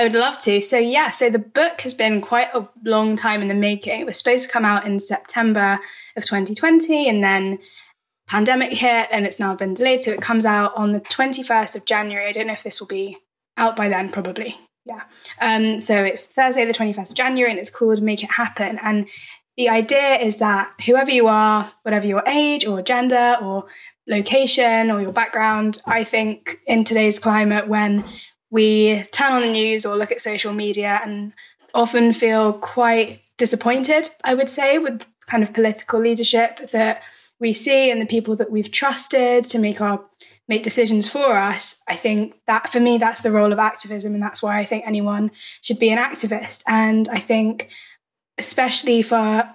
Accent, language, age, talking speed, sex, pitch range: British, English, 10-29, 195 wpm, female, 210-240 Hz